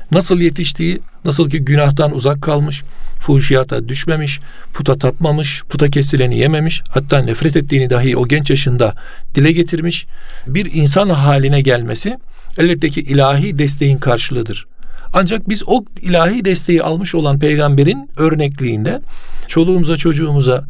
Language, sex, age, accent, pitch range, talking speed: Turkish, male, 50-69, native, 135-165 Hz, 120 wpm